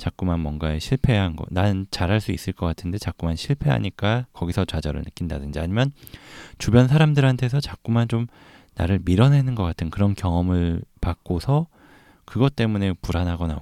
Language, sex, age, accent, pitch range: Korean, male, 20-39, native, 85-115 Hz